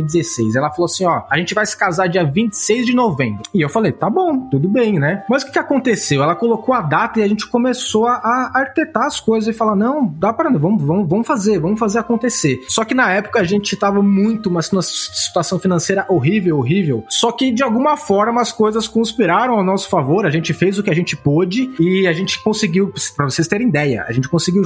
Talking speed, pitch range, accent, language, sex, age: 235 wpm, 160-215 Hz, Brazilian, Portuguese, male, 20-39